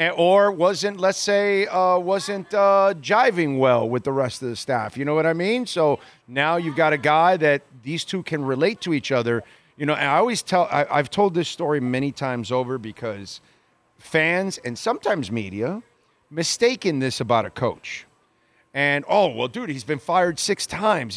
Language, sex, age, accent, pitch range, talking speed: English, male, 40-59, American, 145-195 Hz, 185 wpm